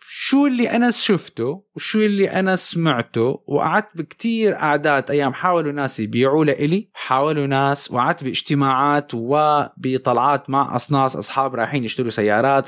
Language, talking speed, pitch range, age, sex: Arabic, 130 wpm, 125-155 Hz, 20-39, male